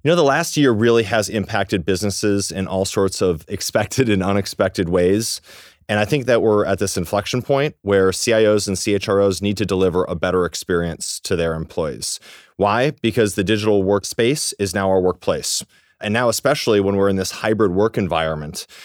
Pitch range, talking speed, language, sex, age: 95-110 Hz, 185 wpm, English, male, 30-49